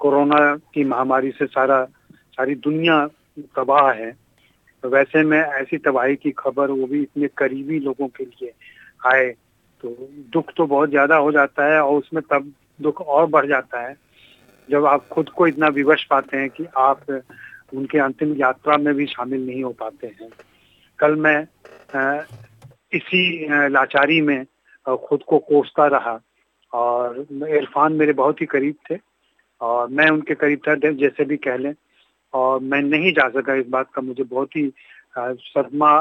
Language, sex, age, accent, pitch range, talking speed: Hindi, male, 40-59, native, 130-150 Hz, 160 wpm